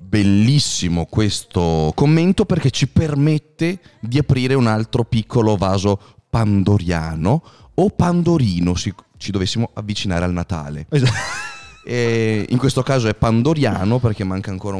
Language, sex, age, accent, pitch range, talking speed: Italian, male, 30-49, native, 100-135 Hz, 120 wpm